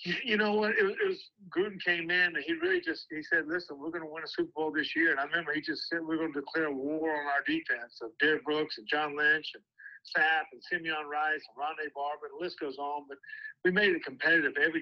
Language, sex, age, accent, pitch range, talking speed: English, male, 50-69, American, 150-215 Hz, 260 wpm